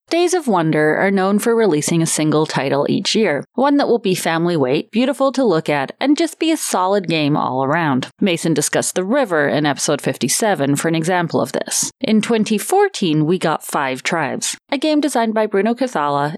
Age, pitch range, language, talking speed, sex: 30-49, 155-230 Hz, English, 200 wpm, female